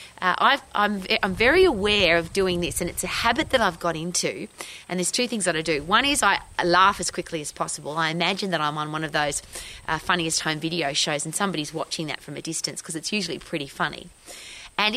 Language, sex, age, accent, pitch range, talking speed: English, female, 30-49, Australian, 165-225 Hz, 235 wpm